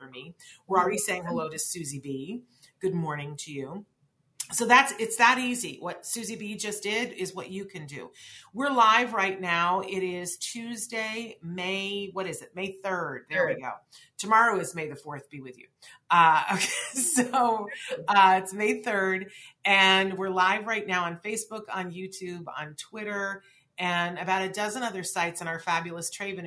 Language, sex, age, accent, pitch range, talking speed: English, female, 40-59, American, 160-190 Hz, 180 wpm